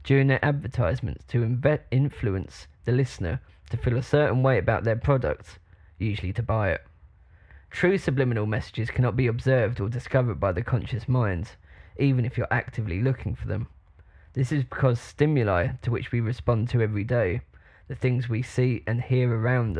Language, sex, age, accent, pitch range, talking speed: English, male, 20-39, British, 100-130 Hz, 170 wpm